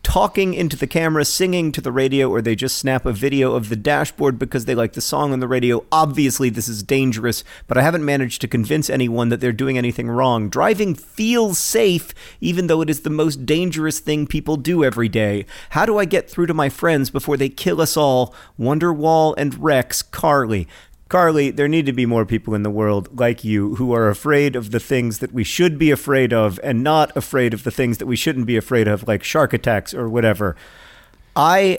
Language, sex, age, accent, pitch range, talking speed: English, male, 40-59, American, 120-155 Hz, 215 wpm